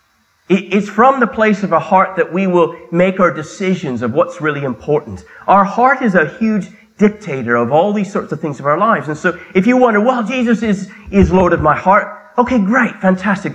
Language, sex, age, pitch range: English, male, 30-49, 150-210 Hz